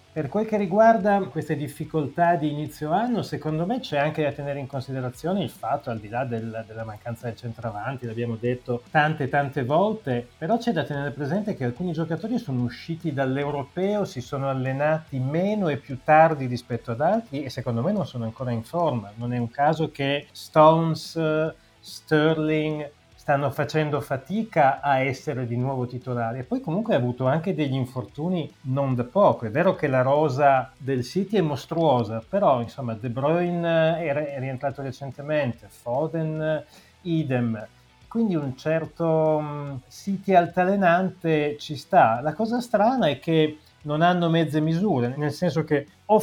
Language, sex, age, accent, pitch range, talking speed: Italian, male, 30-49, native, 125-165 Hz, 165 wpm